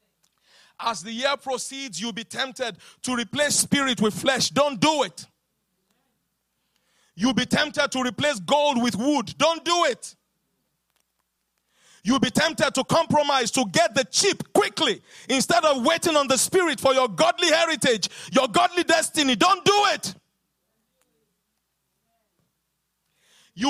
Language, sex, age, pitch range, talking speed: English, male, 40-59, 235-375 Hz, 135 wpm